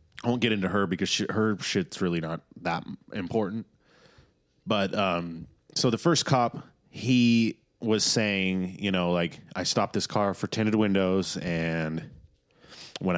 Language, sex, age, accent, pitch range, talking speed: English, male, 30-49, American, 90-115 Hz, 155 wpm